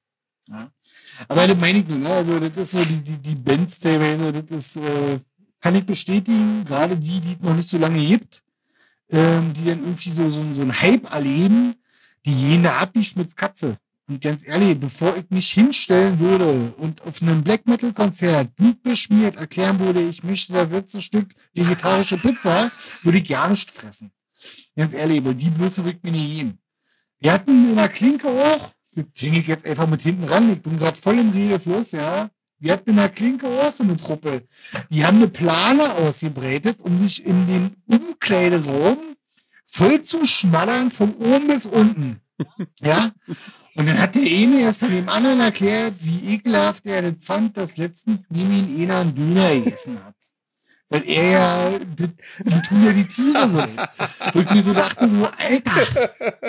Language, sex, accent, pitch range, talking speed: German, male, German, 160-215 Hz, 180 wpm